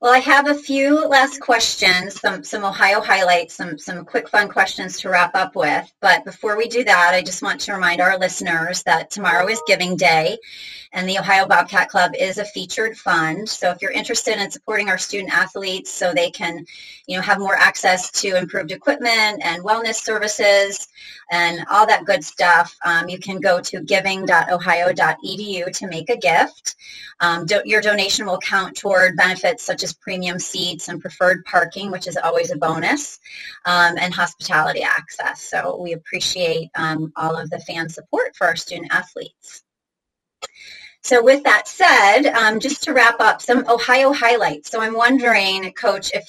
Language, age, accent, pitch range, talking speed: English, 30-49, American, 180-225 Hz, 180 wpm